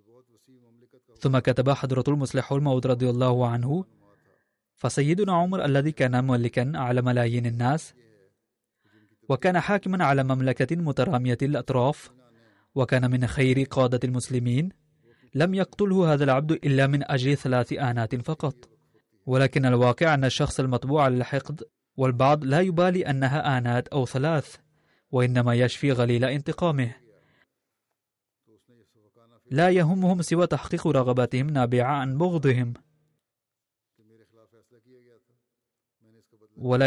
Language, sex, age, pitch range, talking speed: Arabic, male, 20-39, 120-145 Hz, 100 wpm